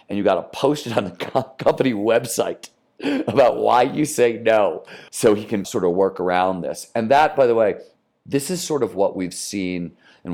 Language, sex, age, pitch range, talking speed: English, male, 40-59, 90-110 Hz, 205 wpm